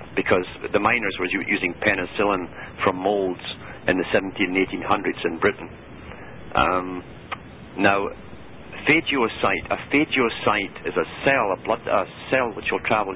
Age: 60-79